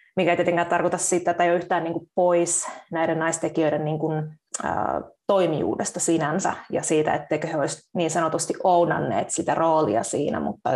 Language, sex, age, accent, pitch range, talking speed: Finnish, female, 20-39, native, 165-200 Hz, 140 wpm